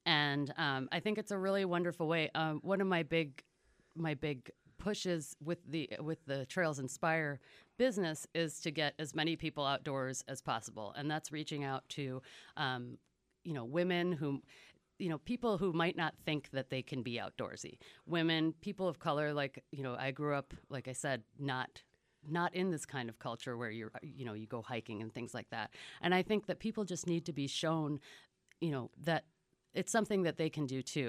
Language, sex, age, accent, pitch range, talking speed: English, female, 30-49, American, 130-165 Hz, 205 wpm